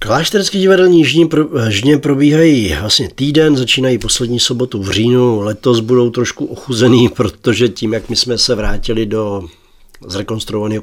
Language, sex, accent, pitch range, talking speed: Czech, male, native, 100-125 Hz, 135 wpm